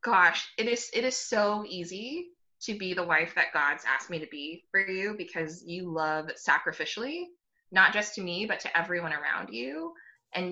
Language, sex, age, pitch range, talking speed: English, female, 20-39, 165-220 Hz, 190 wpm